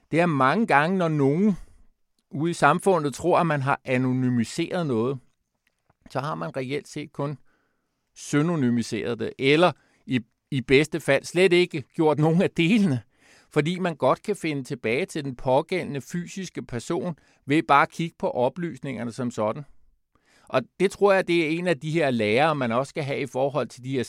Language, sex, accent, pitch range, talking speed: Danish, male, native, 125-165 Hz, 180 wpm